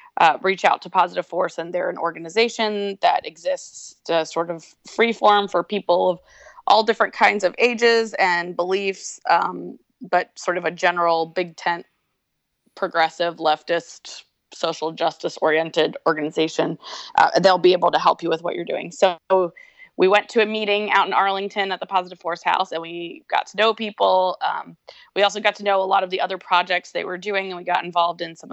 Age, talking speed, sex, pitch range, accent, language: 20-39, 195 wpm, female, 170-200 Hz, American, English